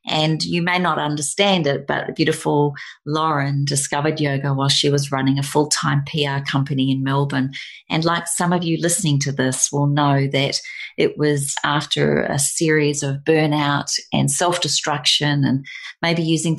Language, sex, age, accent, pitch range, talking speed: English, female, 40-59, Australian, 140-160 Hz, 160 wpm